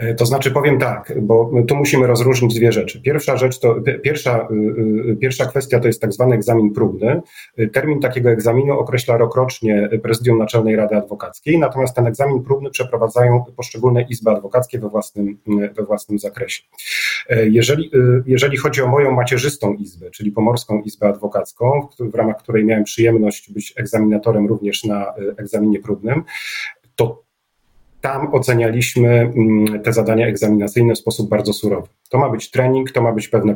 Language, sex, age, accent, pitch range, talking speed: Polish, male, 40-59, native, 105-130 Hz, 145 wpm